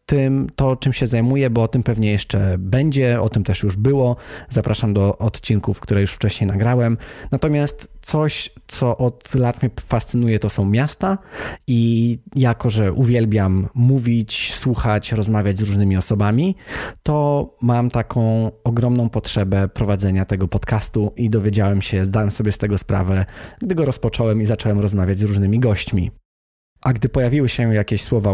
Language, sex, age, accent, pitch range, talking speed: Polish, male, 20-39, native, 100-120 Hz, 155 wpm